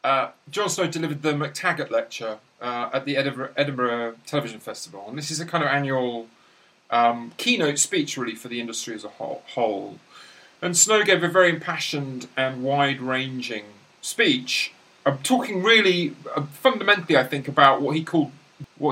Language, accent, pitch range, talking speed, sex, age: English, British, 125-160 Hz, 155 wpm, male, 40-59